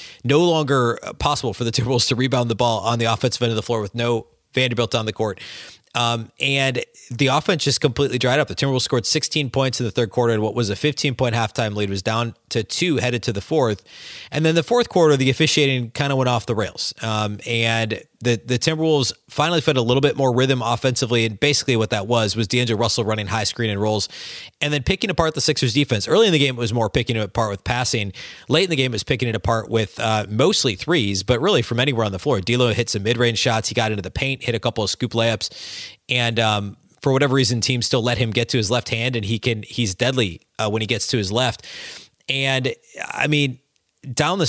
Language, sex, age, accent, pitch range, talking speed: English, male, 30-49, American, 115-135 Hz, 245 wpm